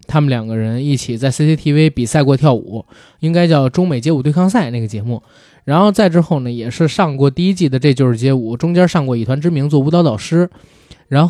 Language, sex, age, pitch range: Chinese, male, 20-39, 125-180 Hz